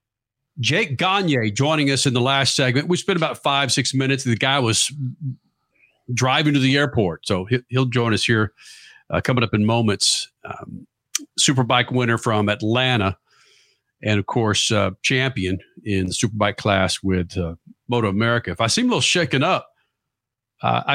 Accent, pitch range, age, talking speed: American, 115-155 Hz, 50-69, 165 wpm